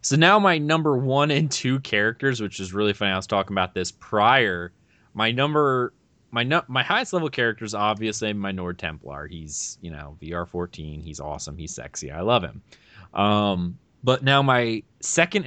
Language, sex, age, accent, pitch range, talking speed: English, male, 20-39, American, 90-120 Hz, 180 wpm